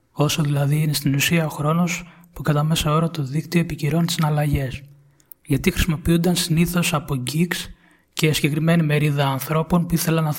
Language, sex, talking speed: Greek, male, 155 wpm